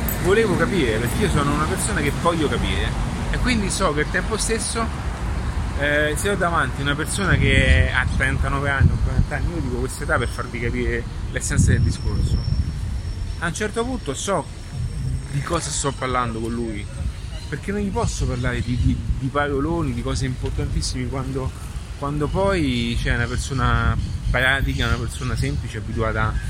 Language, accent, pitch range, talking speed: Italian, native, 90-130 Hz, 165 wpm